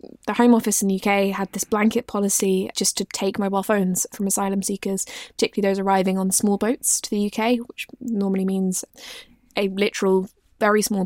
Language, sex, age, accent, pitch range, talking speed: English, female, 20-39, British, 195-235 Hz, 185 wpm